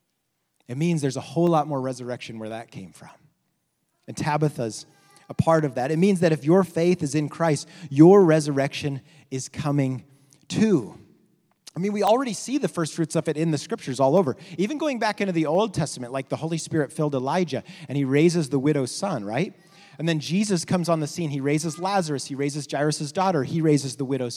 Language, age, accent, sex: English, 30-49, American, male